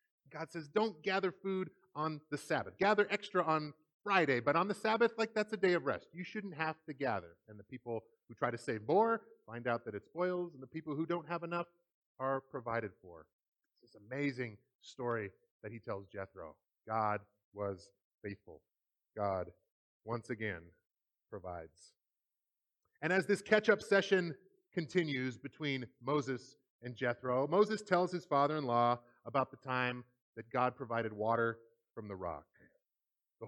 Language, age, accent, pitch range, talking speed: English, 30-49, American, 120-180 Hz, 160 wpm